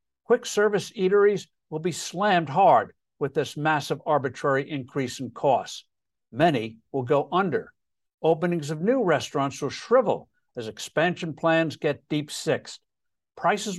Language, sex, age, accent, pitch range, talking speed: English, male, 60-79, American, 145-200 Hz, 135 wpm